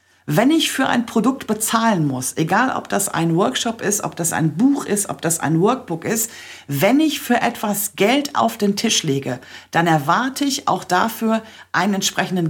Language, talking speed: German, 185 wpm